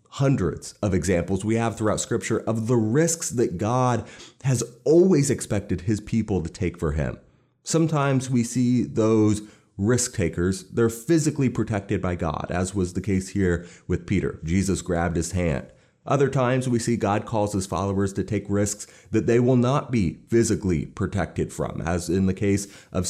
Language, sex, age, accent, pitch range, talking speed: English, male, 30-49, American, 95-130 Hz, 175 wpm